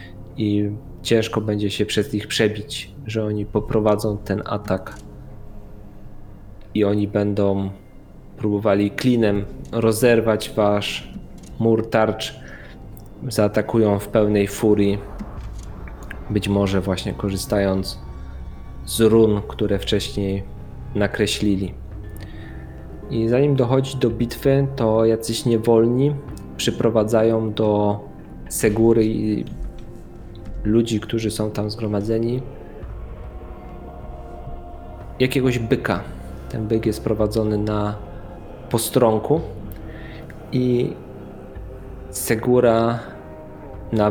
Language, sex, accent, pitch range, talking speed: Polish, male, native, 100-115 Hz, 85 wpm